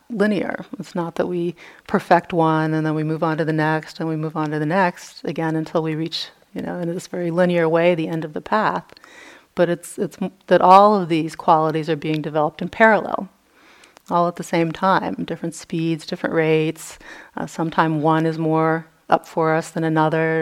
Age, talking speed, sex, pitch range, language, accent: 30-49, 205 wpm, female, 160-175 Hz, English, American